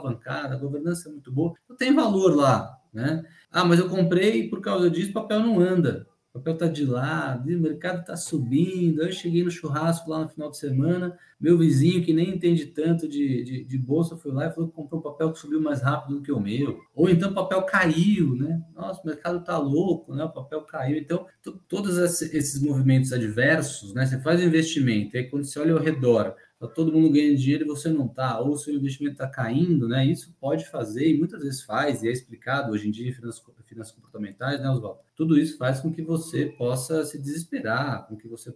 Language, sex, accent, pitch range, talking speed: Portuguese, male, Brazilian, 125-165 Hz, 225 wpm